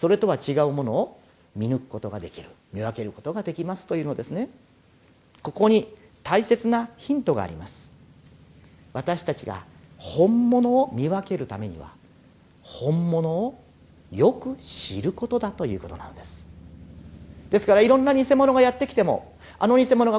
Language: Japanese